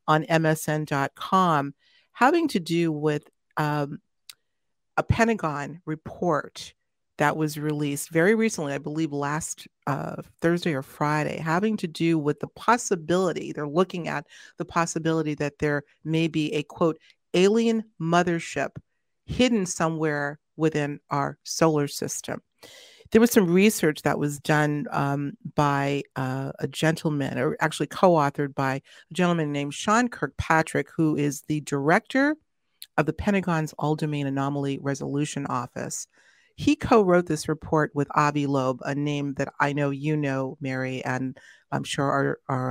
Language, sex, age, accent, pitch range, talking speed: English, female, 40-59, American, 145-175 Hz, 140 wpm